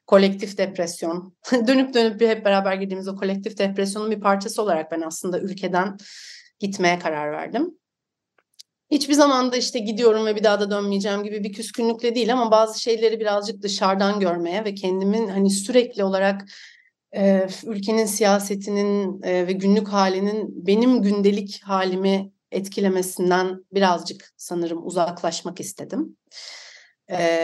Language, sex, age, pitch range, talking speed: Turkish, female, 30-49, 185-220 Hz, 130 wpm